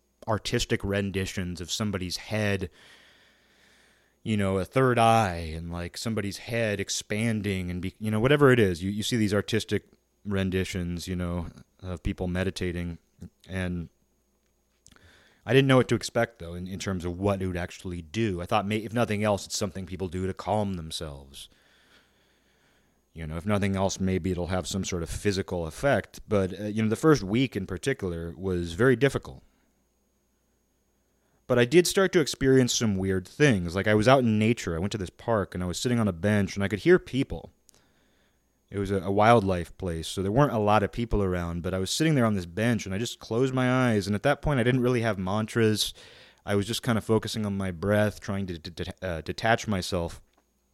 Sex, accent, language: male, American, English